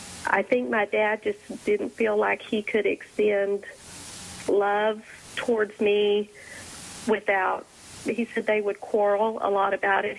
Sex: female